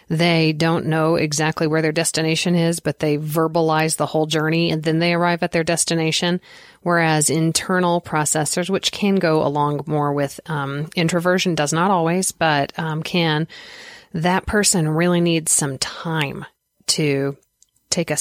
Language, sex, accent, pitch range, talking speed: English, female, American, 155-180 Hz, 155 wpm